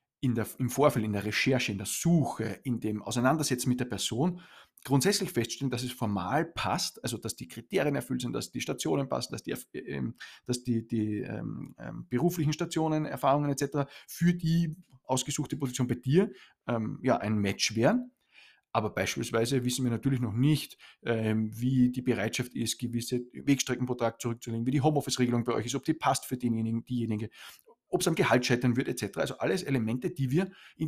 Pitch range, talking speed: 120-145 Hz, 185 wpm